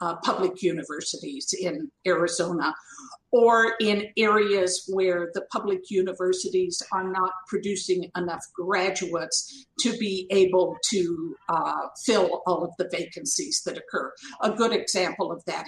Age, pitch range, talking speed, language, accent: 50-69, 180-215 Hz, 130 wpm, English, American